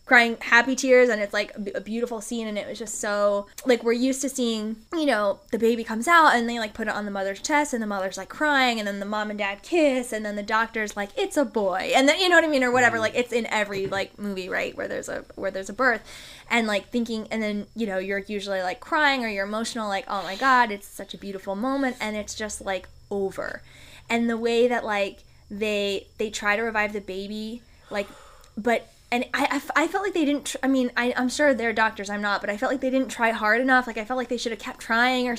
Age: 10-29